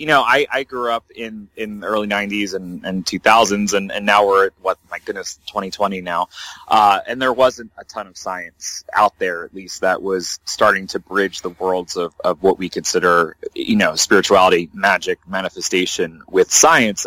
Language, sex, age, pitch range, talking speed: English, male, 30-49, 95-115 Hz, 195 wpm